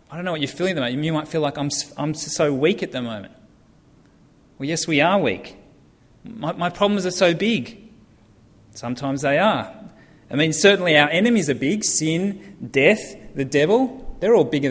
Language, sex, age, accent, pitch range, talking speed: English, male, 30-49, Australian, 130-175 Hz, 190 wpm